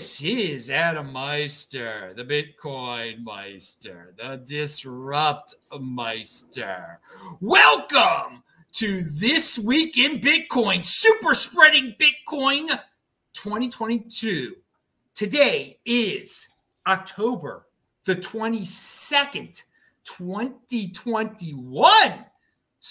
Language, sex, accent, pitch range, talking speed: English, male, American, 220-340 Hz, 70 wpm